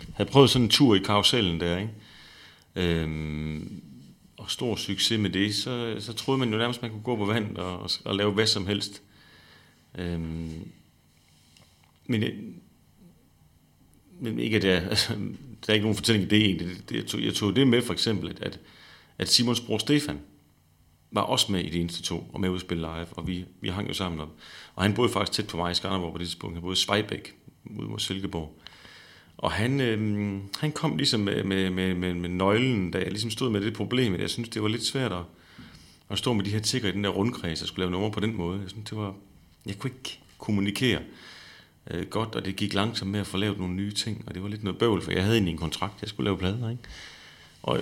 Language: Danish